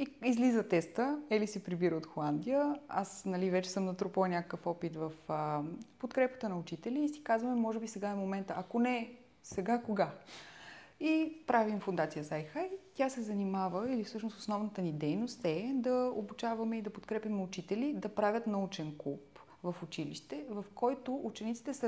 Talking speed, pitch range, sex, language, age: 165 wpm, 180-230 Hz, female, Bulgarian, 30-49